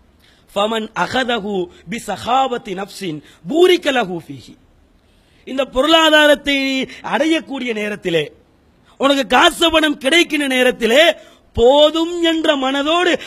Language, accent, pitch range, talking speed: English, Indian, 245-315 Hz, 85 wpm